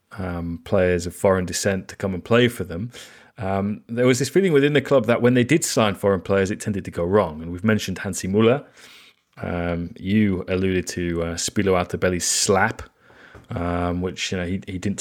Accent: British